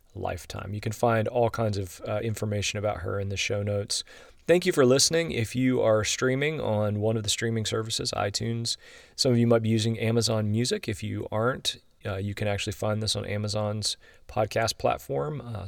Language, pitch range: English, 105-120 Hz